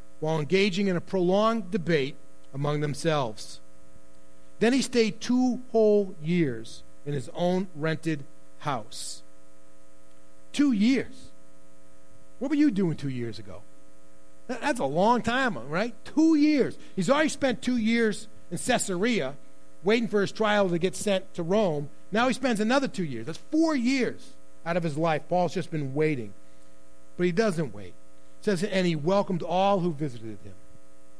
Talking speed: 155 wpm